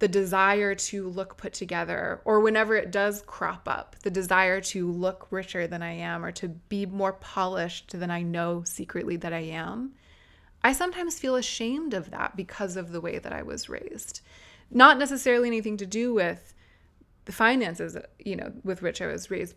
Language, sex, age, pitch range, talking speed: English, female, 20-39, 175-225 Hz, 185 wpm